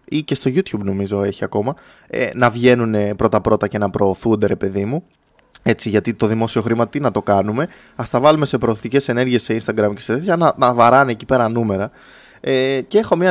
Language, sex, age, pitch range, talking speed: Greek, male, 20-39, 105-145 Hz, 205 wpm